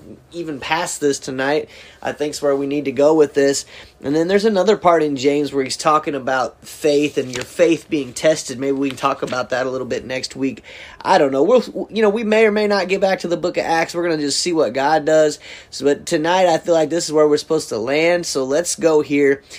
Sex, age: male, 30-49